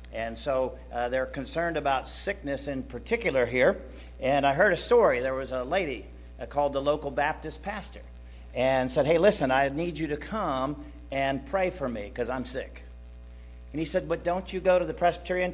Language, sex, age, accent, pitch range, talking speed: English, male, 50-69, American, 135-195 Hz, 195 wpm